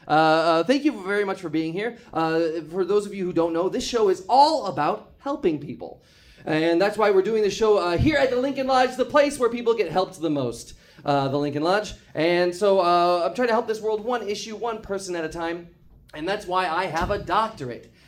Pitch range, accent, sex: 170-245 Hz, American, male